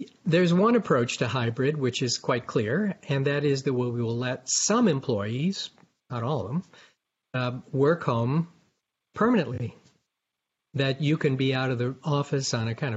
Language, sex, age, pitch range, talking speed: English, male, 50-69, 125-160 Hz, 170 wpm